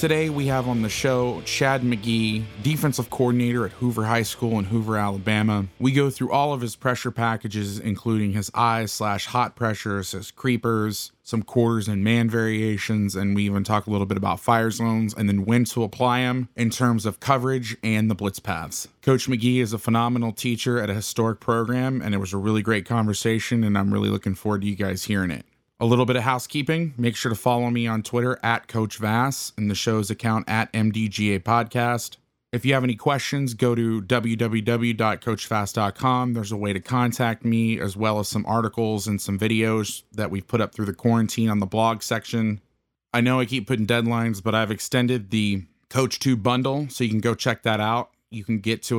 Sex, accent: male, American